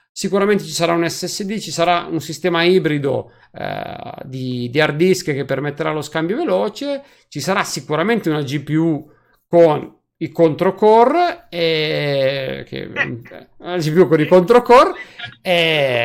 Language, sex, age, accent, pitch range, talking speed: Italian, male, 50-69, native, 145-200 Hz, 140 wpm